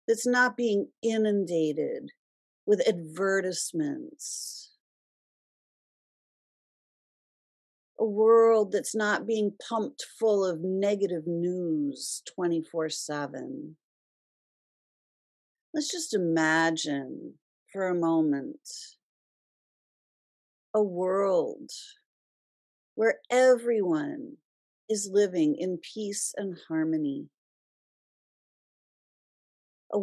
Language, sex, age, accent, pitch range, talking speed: English, female, 50-69, American, 180-260 Hz, 70 wpm